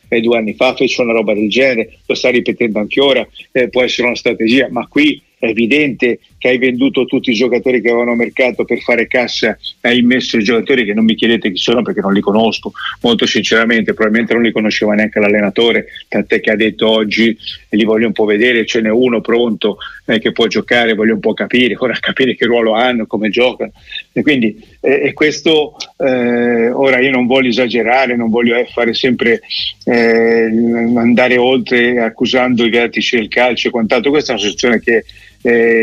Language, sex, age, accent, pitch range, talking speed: Italian, male, 50-69, native, 110-125 Hz, 200 wpm